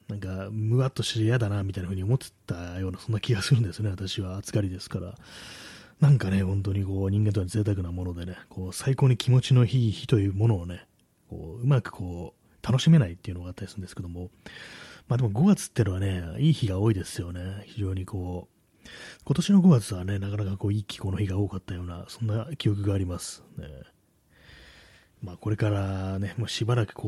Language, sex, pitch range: Japanese, male, 95-125 Hz